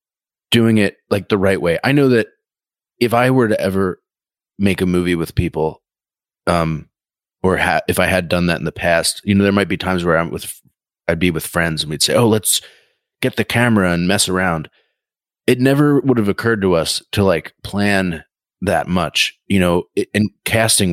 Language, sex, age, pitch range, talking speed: English, male, 30-49, 85-105 Hz, 205 wpm